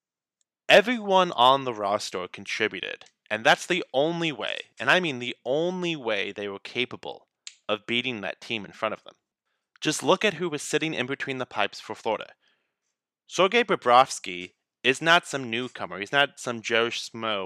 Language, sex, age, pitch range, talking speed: English, male, 20-39, 115-175 Hz, 165 wpm